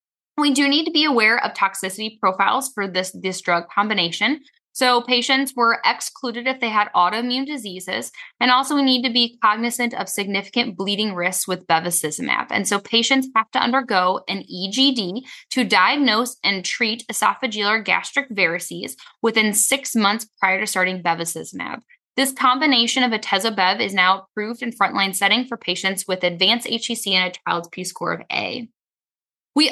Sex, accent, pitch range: female, American, 195-250 Hz